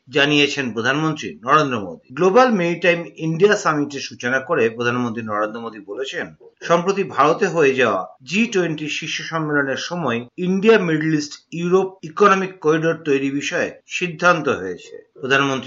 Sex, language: male, Bengali